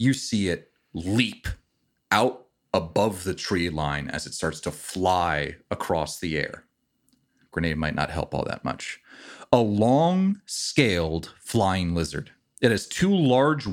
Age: 30-49